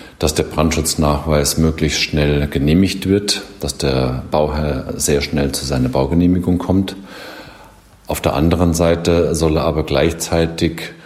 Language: German